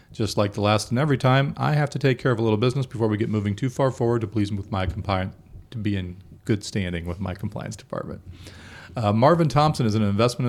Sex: male